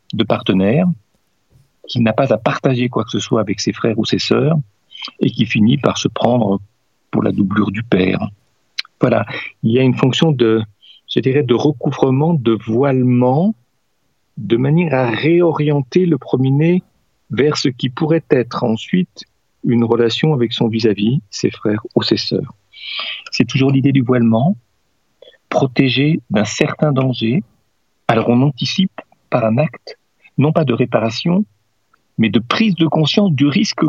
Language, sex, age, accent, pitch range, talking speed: French, male, 50-69, French, 115-150 Hz, 155 wpm